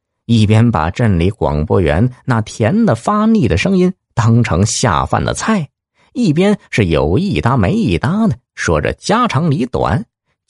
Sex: male